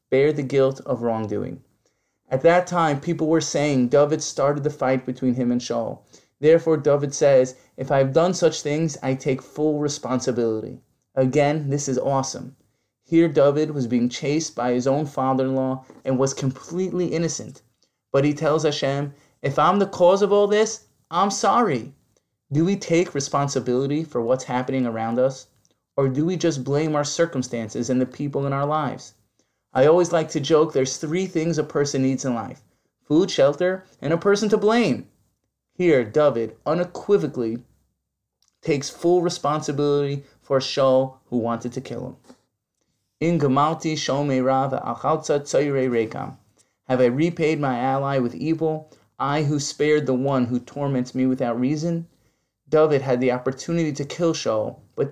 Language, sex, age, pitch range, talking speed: English, male, 20-39, 130-155 Hz, 160 wpm